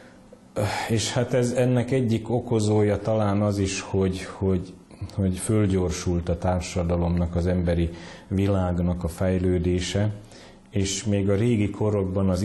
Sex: male